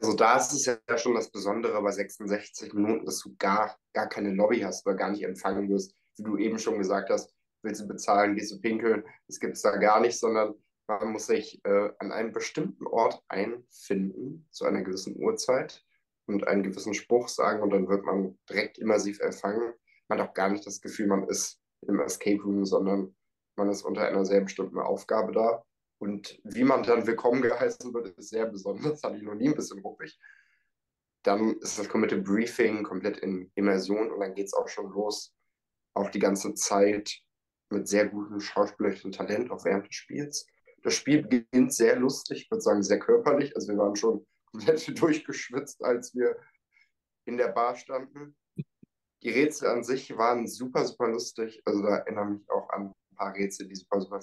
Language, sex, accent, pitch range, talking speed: German, male, German, 100-120 Hz, 195 wpm